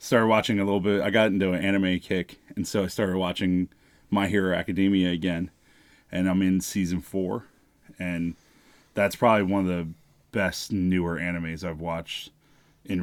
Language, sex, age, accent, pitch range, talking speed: English, male, 30-49, American, 90-100 Hz, 170 wpm